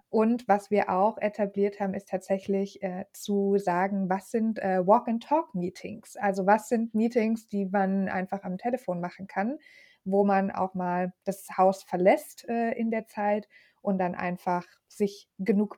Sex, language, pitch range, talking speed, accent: female, German, 190-220 Hz, 160 wpm, German